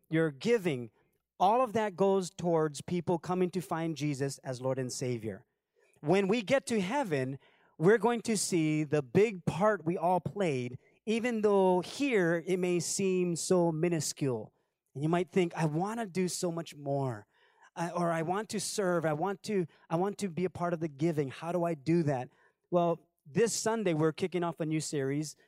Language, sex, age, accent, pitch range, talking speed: English, male, 30-49, American, 150-185 Hz, 190 wpm